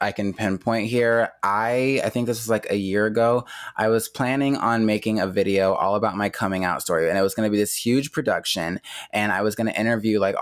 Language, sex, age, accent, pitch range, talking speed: English, male, 20-39, American, 95-115 Hz, 230 wpm